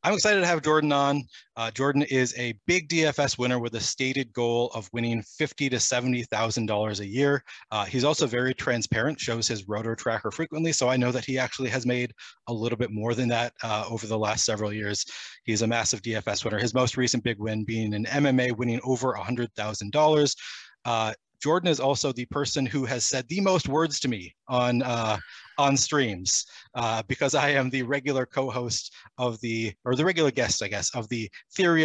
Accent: American